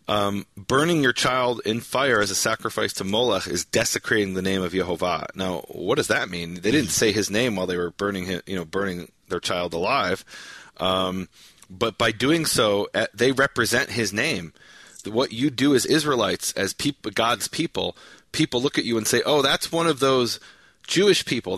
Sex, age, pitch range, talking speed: male, 30-49, 95-125 Hz, 190 wpm